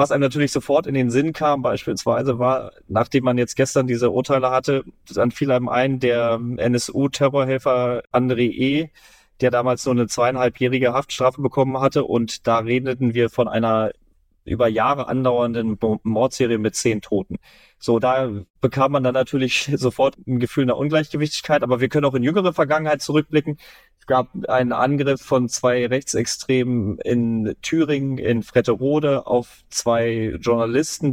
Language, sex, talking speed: German, male, 155 wpm